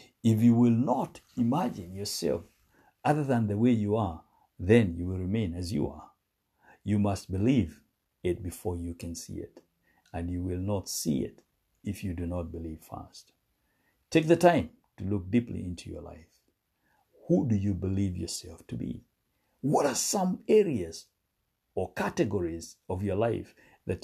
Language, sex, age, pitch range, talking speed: English, male, 60-79, 85-115 Hz, 165 wpm